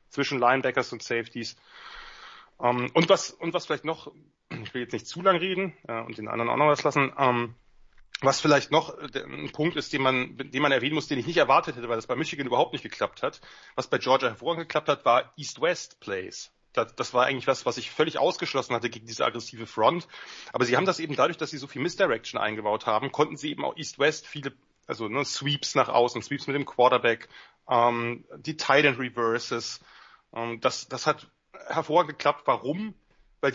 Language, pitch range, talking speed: German, 125-165 Hz, 200 wpm